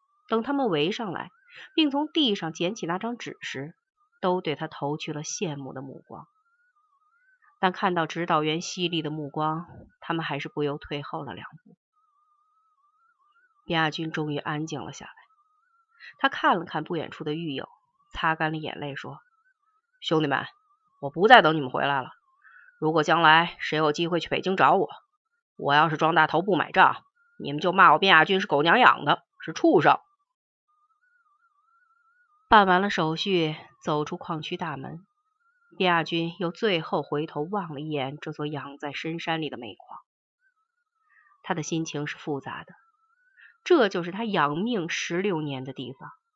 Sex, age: female, 30-49